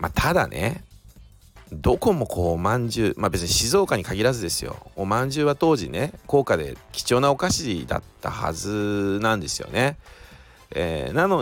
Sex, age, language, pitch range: male, 40-59, Japanese, 85-115 Hz